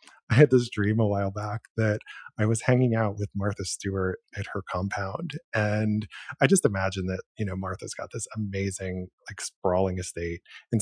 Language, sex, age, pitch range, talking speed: English, male, 30-49, 95-120 Hz, 185 wpm